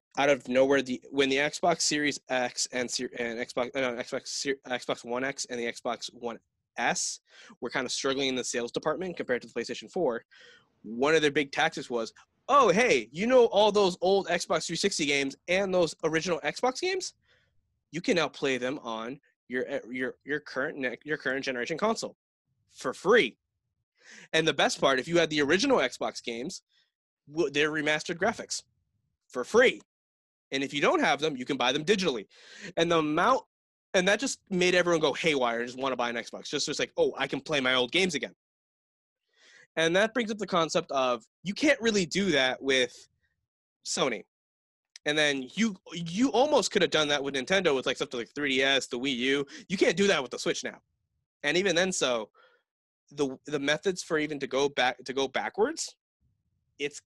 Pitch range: 130-180 Hz